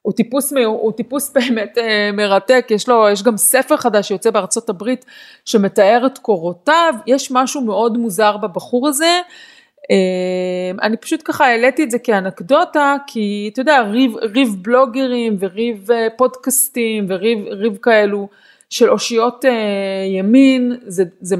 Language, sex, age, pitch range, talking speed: Hebrew, female, 30-49, 195-255 Hz, 130 wpm